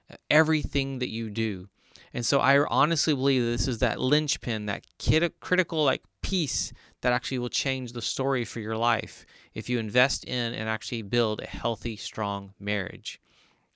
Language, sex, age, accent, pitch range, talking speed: English, male, 30-49, American, 115-140 Hz, 170 wpm